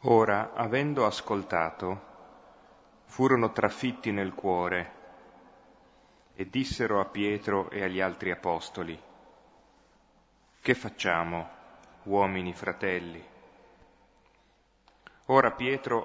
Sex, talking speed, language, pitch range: male, 80 wpm, Italian, 90-110 Hz